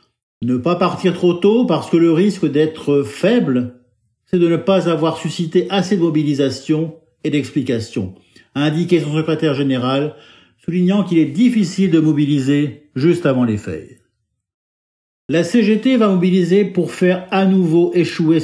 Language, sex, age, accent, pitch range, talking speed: French, male, 50-69, French, 135-180 Hz, 155 wpm